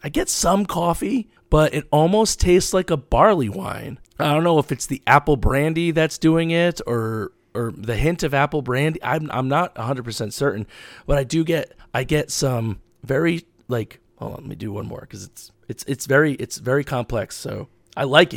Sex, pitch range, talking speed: male, 115-150 Hz, 205 wpm